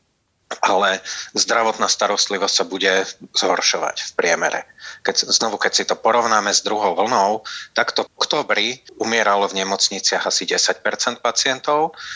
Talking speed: 125 wpm